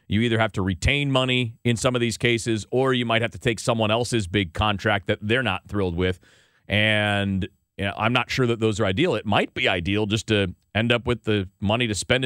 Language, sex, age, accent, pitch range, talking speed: English, male, 40-59, American, 95-120 Hz, 240 wpm